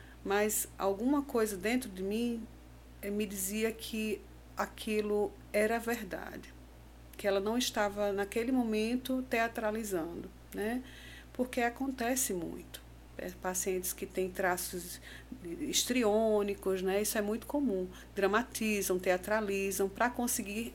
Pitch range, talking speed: 180-230 Hz, 115 wpm